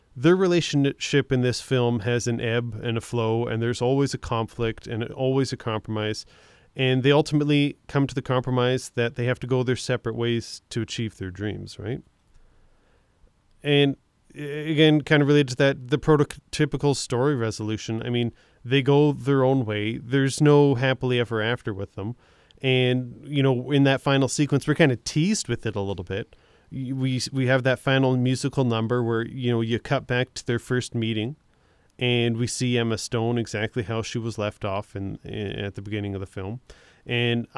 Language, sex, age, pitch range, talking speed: English, male, 30-49, 115-135 Hz, 185 wpm